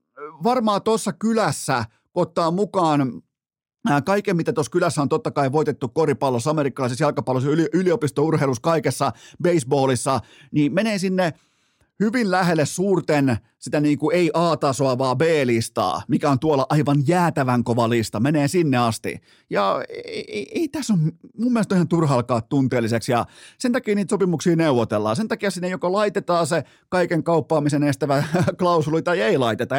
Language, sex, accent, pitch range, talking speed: Finnish, male, native, 130-175 Hz, 145 wpm